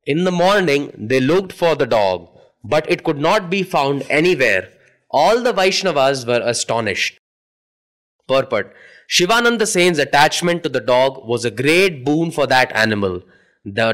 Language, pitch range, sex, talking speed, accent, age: English, 135-190 Hz, male, 145 wpm, Indian, 20-39